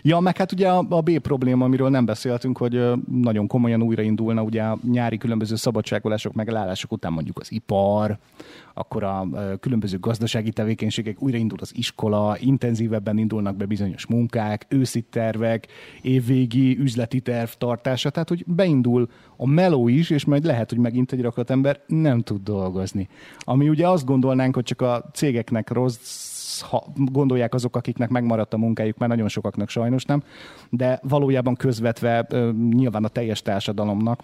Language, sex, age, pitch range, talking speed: Hungarian, male, 30-49, 110-125 Hz, 150 wpm